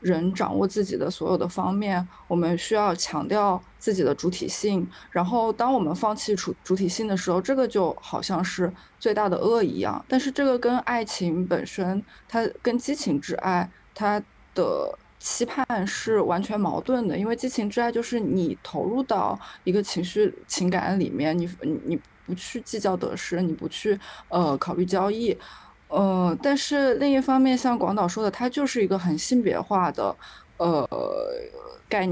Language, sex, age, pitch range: Chinese, female, 20-39, 185-240 Hz